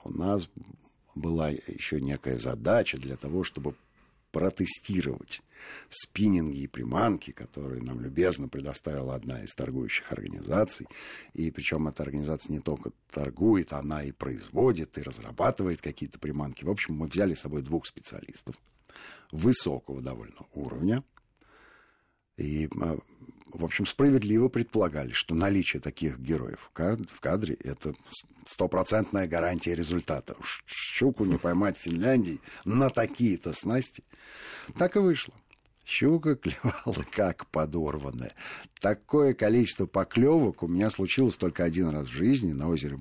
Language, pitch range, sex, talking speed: Russian, 75-110 Hz, male, 125 wpm